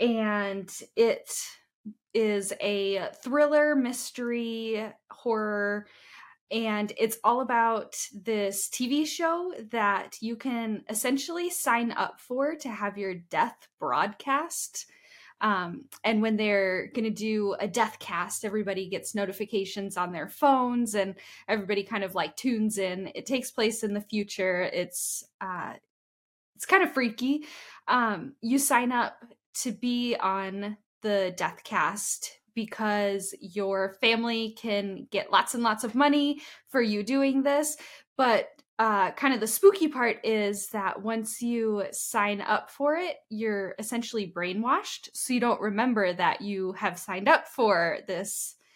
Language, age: English, 10-29